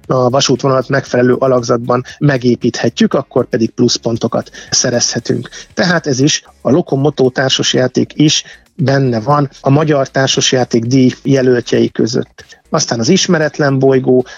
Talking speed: 120 wpm